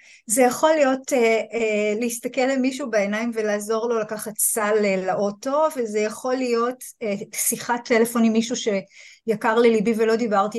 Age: 30-49